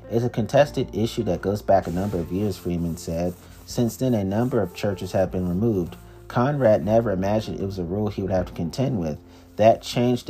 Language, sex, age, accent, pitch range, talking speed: English, male, 30-49, American, 90-110 Hz, 215 wpm